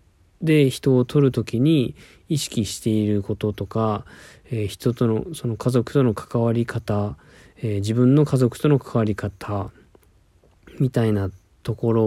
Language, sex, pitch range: Japanese, male, 105-145 Hz